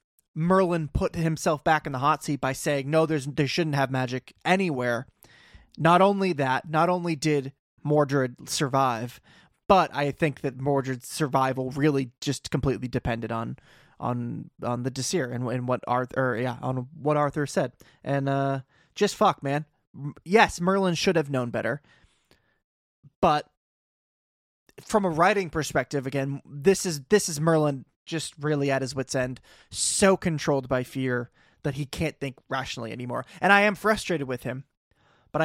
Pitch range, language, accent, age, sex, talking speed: 130-165 Hz, English, American, 20-39, male, 160 wpm